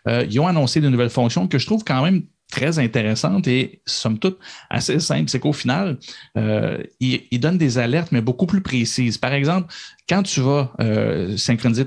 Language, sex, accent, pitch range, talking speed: French, male, Canadian, 120-155 Hz, 195 wpm